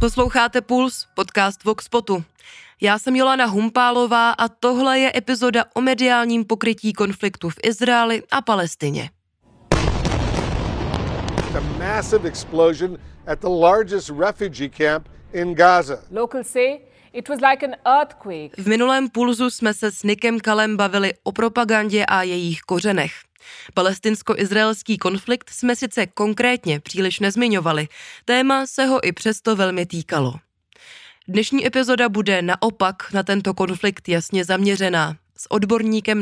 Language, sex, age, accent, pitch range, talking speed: Czech, female, 20-39, native, 185-240 Hz, 100 wpm